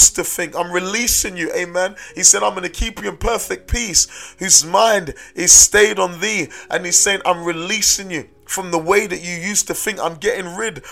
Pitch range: 170-205 Hz